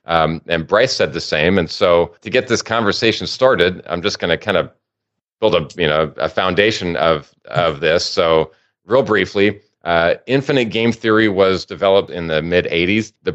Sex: male